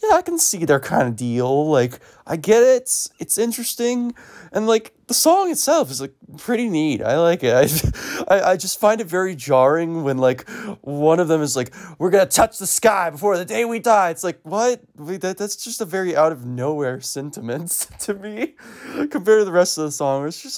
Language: English